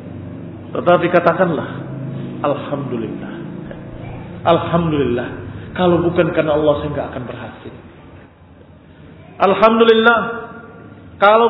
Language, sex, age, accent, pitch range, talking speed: Indonesian, male, 40-59, native, 140-210 Hz, 70 wpm